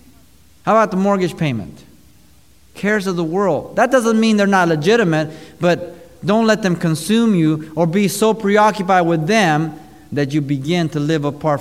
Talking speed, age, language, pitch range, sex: 170 wpm, 30-49, English, 125-175 Hz, male